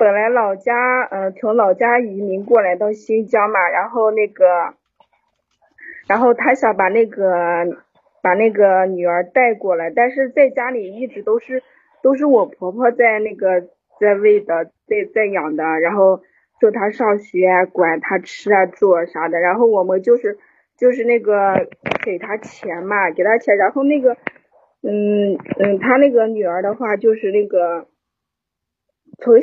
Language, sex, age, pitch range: Chinese, female, 20-39, 195-265 Hz